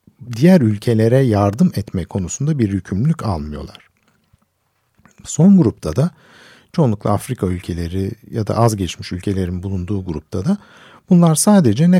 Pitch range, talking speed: 100-150 Hz, 125 wpm